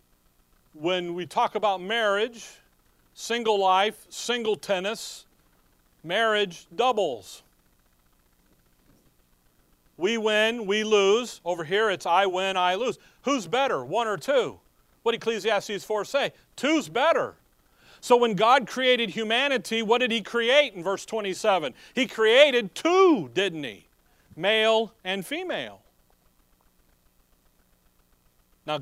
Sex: male